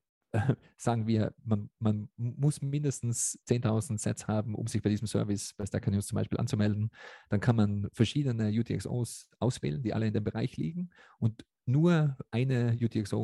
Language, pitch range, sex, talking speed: German, 100-115 Hz, male, 165 wpm